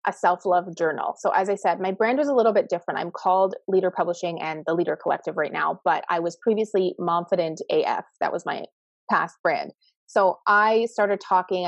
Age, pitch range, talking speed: 30-49, 165-210 Hz, 200 wpm